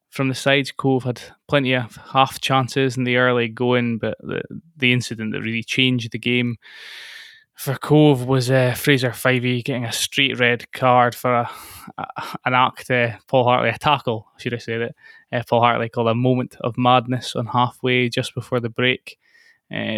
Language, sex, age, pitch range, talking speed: English, male, 20-39, 120-135 Hz, 185 wpm